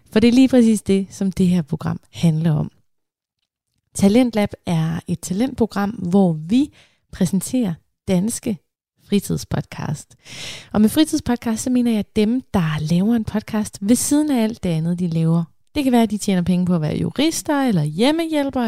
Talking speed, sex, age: 175 wpm, female, 20-39